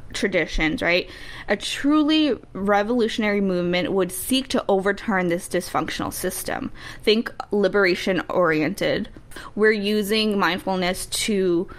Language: English